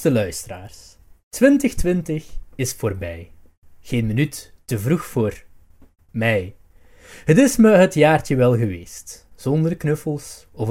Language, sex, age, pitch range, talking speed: Dutch, male, 20-39, 110-175 Hz, 110 wpm